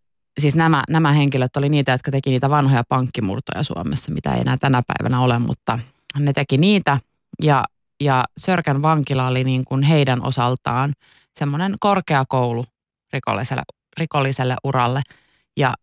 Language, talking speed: Finnish, 140 wpm